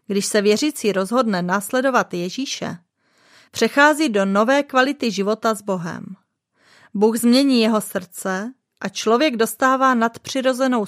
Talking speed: 115 wpm